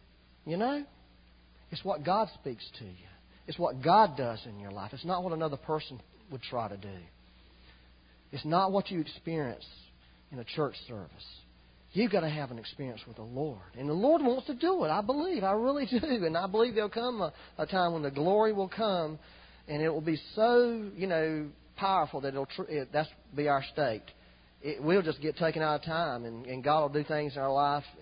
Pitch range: 105-160 Hz